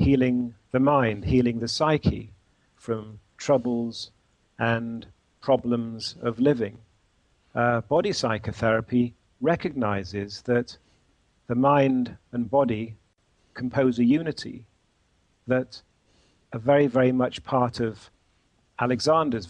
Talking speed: 100 wpm